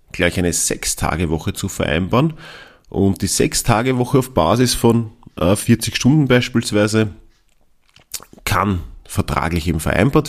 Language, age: German, 40-59